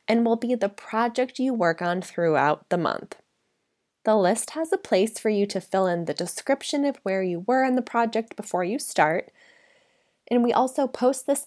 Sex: female